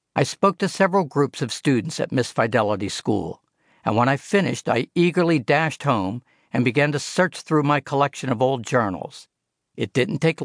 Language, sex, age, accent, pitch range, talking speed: English, male, 60-79, American, 115-160 Hz, 185 wpm